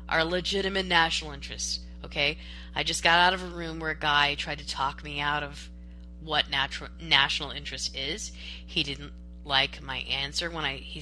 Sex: female